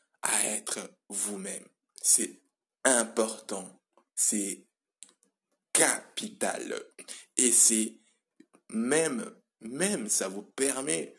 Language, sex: French, male